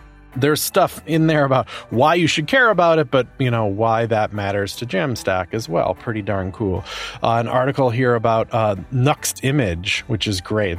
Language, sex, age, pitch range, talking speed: English, male, 30-49, 100-130 Hz, 195 wpm